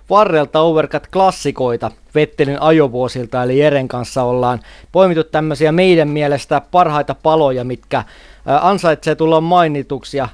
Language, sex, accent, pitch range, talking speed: Finnish, male, native, 150-180 Hz, 110 wpm